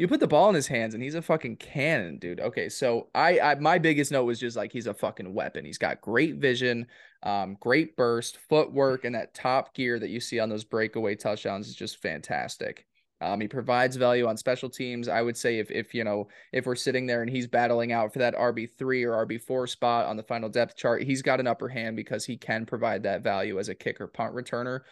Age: 20-39